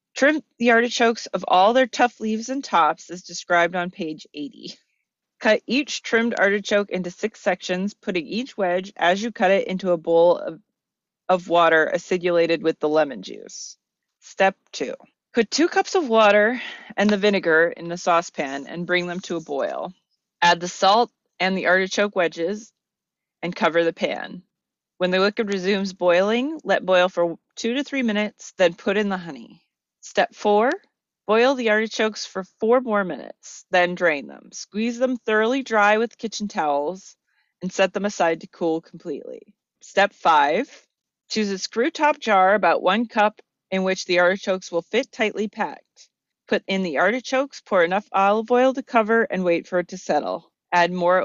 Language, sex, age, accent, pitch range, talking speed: English, female, 30-49, American, 175-230 Hz, 175 wpm